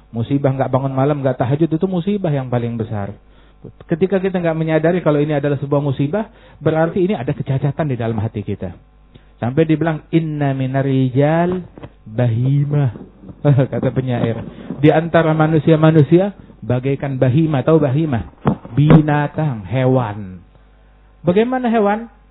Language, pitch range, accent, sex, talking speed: Indonesian, 135-195 Hz, native, male, 125 wpm